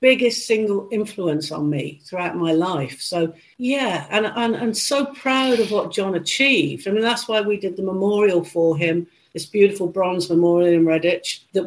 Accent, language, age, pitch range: British, English, 50-69, 165-200 Hz